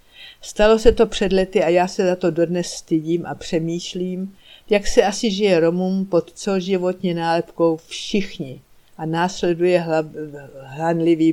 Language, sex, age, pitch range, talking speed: Czech, female, 60-79, 165-185 Hz, 145 wpm